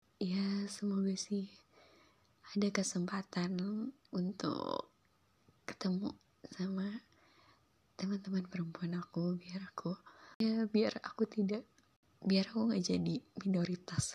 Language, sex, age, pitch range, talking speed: Indonesian, female, 20-39, 180-225 Hz, 95 wpm